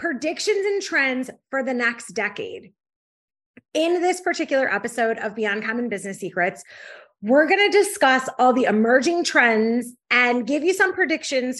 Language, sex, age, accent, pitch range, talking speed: English, female, 30-49, American, 225-310 Hz, 145 wpm